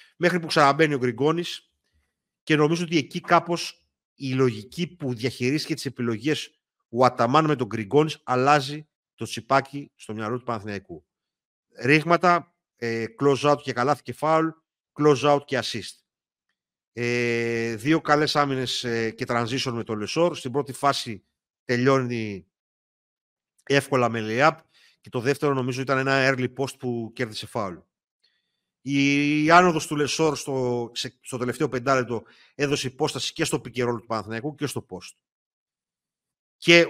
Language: Greek